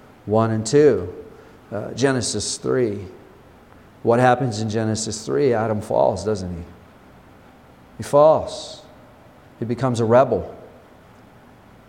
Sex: male